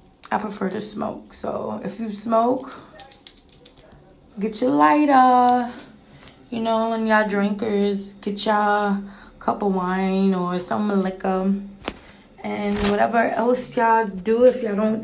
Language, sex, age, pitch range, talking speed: English, female, 20-39, 190-225 Hz, 130 wpm